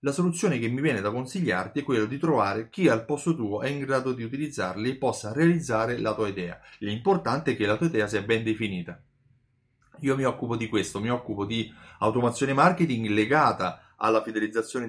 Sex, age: male, 30-49